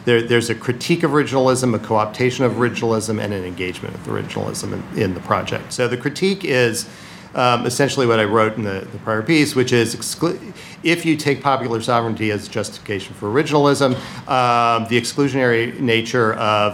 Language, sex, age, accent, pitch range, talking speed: English, male, 40-59, American, 105-125 Hz, 180 wpm